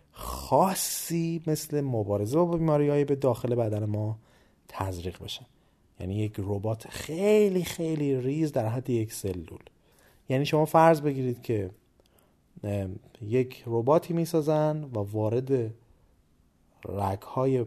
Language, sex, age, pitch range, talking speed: Persian, male, 30-49, 100-135 Hz, 115 wpm